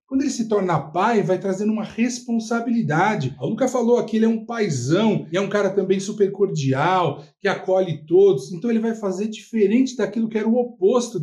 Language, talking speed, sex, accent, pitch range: Portuguese, 205 wpm, male, Brazilian, 165-220 Hz